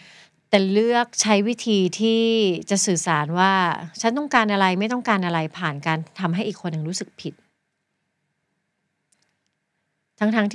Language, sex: Thai, female